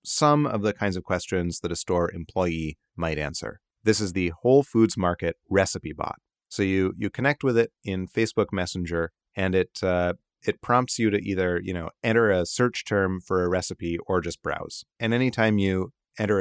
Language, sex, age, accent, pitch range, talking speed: English, male, 30-49, American, 90-105 Hz, 195 wpm